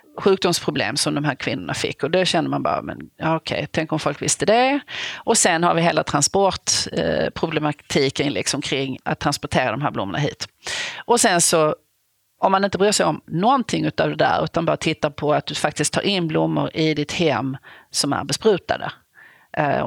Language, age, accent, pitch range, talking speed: Swedish, 40-59, native, 145-190 Hz, 195 wpm